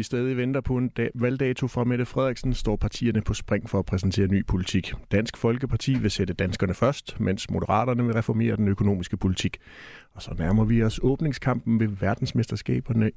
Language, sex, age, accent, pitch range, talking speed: Danish, male, 30-49, native, 95-125 Hz, 180 wpm